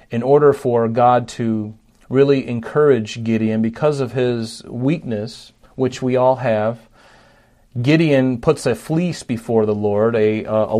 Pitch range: 115-135 Hz